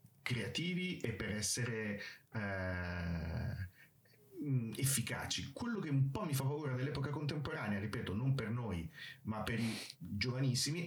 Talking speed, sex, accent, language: 125 wpm, male, native, Italian